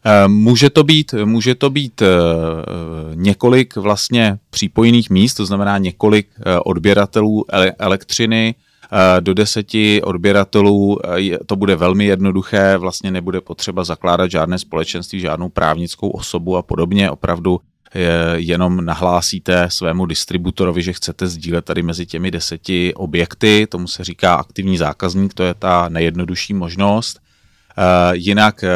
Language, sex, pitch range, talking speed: Czech, male, 90-105 Hz, 120 wpm